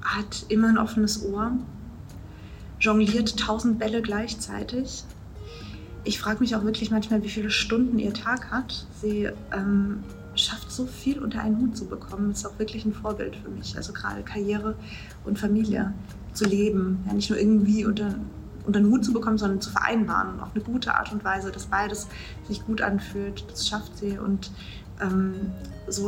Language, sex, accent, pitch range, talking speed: German, female, German, 190-215 Hz, 175 wpm